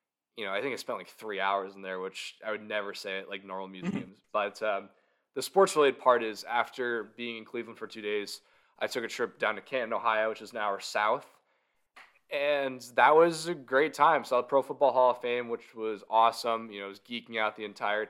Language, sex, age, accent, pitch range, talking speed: English, male, 20-39, American, 100-125 Hz, 240 wpm